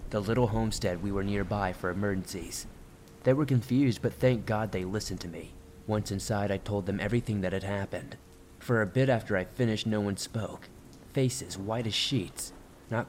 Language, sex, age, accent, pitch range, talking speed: English, male, 30-49, American, 90-115 Hz, 190 wpm